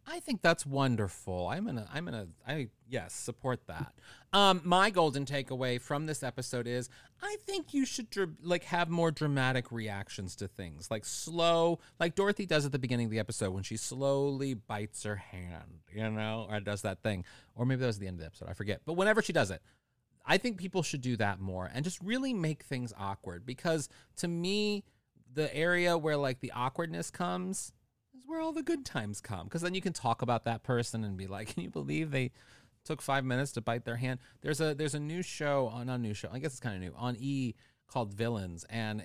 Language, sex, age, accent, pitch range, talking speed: English, male, 30-49, American, 105-155 Hz, 220 wpm